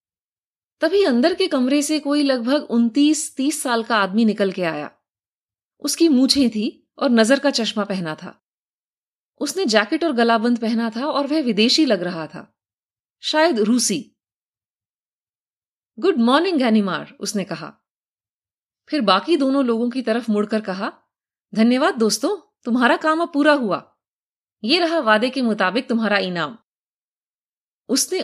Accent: native